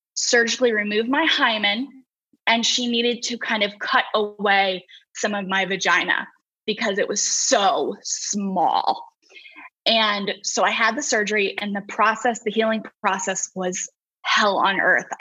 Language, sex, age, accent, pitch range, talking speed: English, female, 10-29, American, 195-230 Hz, 145 wpm